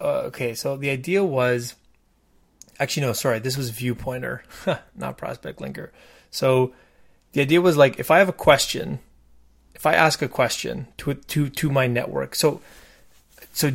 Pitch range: 125-150 Hz